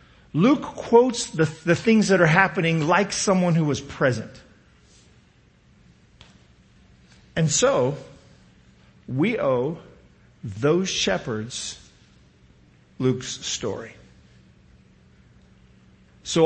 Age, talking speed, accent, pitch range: 50-69, 80 wpm, American, 110-160 Hz